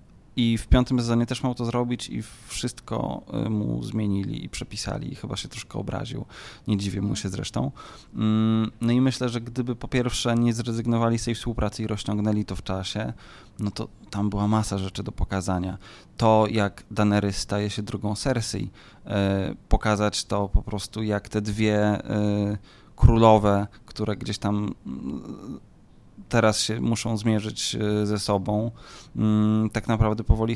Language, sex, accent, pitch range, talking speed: Polish, male, native, 105-115 Hz, 150 wpm